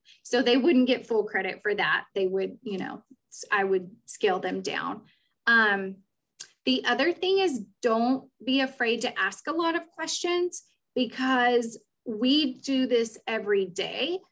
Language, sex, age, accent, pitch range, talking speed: English, female, 30-49, American, 210-265 Hz, 155 wpm